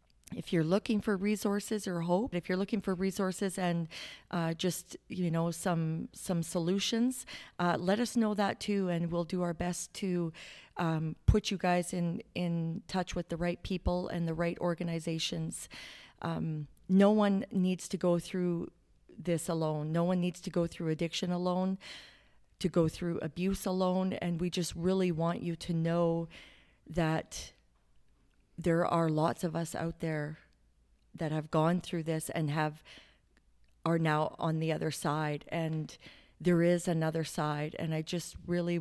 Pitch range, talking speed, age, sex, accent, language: 160-185 Hz, 165 wpm, 40-59, female, American, English